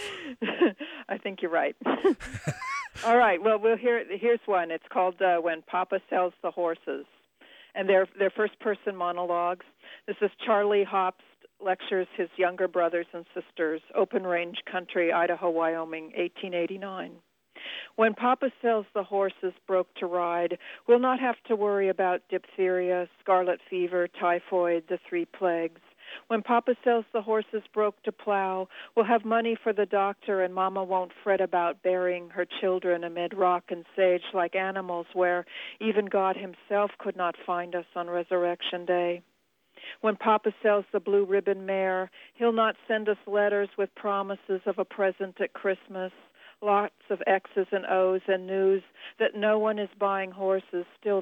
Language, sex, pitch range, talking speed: English, female, 180-215 Hz, 150 wpm